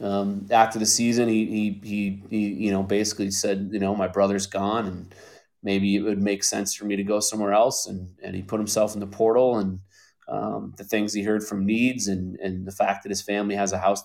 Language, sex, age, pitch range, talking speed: English, male, 30-49, 100-110 Hz, 235 wpm